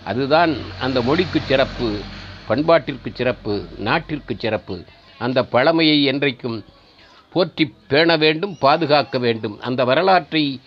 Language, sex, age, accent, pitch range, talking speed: Tamil, male, 50-69, native, 125-170 Hz, 100 wpm